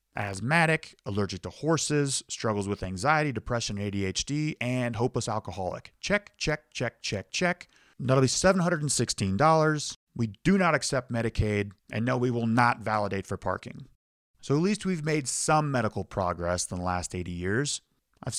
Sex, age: male, 30-49